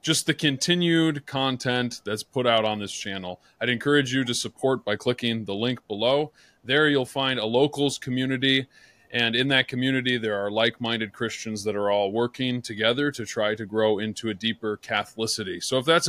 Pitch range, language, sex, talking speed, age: 115-140 Hz, English, male, 185 wpm, 30-49